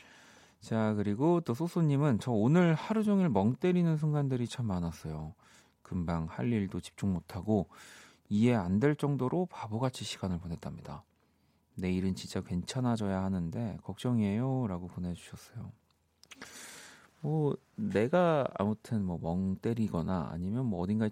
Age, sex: 40-59, male